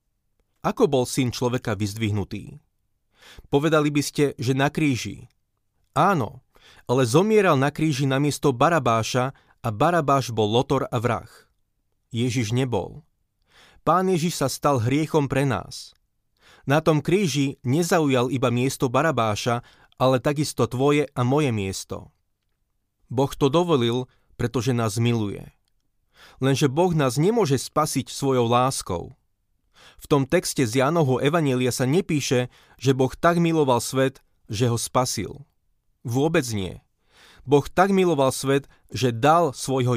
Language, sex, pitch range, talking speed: Slovak, male, 115-145 Hz, 130 wpm